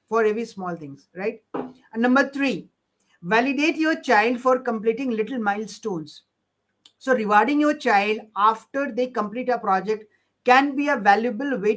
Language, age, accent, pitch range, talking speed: Hindi, 50-69, native, 210-260 Hz, 150 wpm